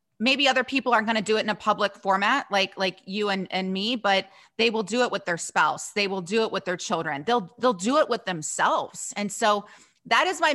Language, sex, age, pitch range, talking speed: English, female, 30-49, 175-225 Hz, 250 wpm